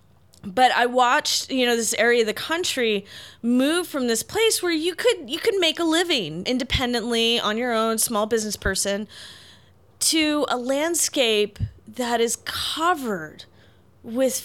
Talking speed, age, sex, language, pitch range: 150 wpm, 20-39, female, English, 185-240 Hz